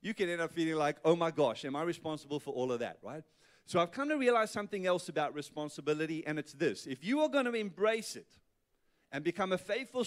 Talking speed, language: 240 wpm, English